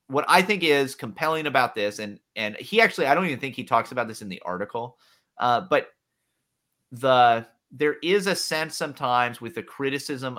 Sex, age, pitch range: male, 30-49, 110-150 Hz